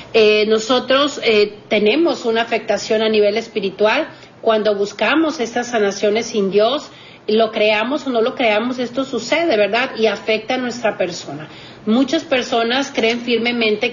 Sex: female